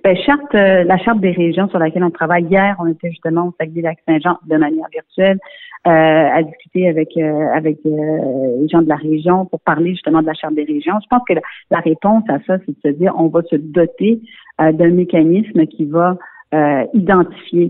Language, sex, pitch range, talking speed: French, female, 160-210 Hz, 215 wpm